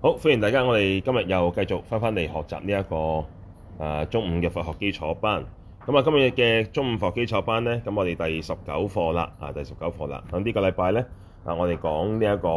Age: 20-39